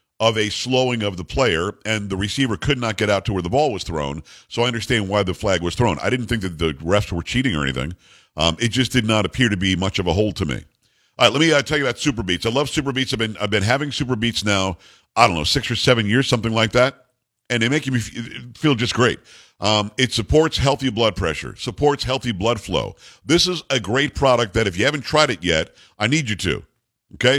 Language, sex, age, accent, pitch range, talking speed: English, male, 50-69, American, 105-135 Hz, 255 wpm